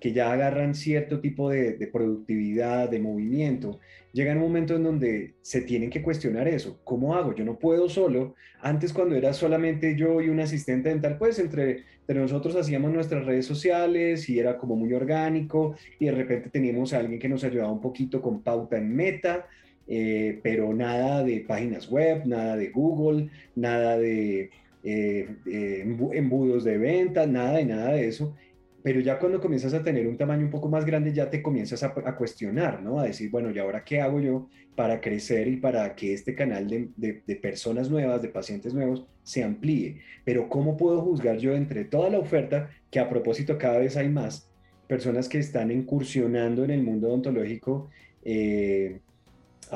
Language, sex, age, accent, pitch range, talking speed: Spanish, male, 20-39, Colombian, 110-145 Hz, 185 wpm